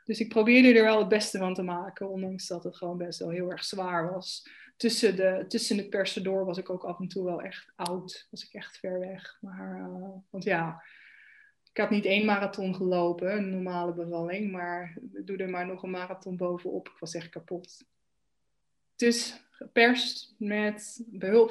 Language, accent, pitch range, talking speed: Dutch, Dutch, 180-220 Hz, 195 wpm